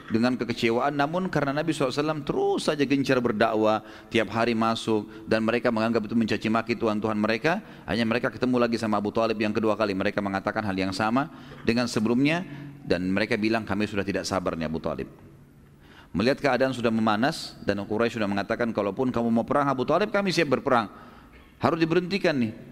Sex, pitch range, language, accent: male, 110-155 Hz, Indonesian, native